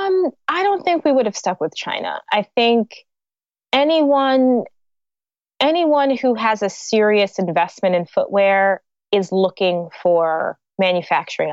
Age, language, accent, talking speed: 20-39, English, American, 130 wpm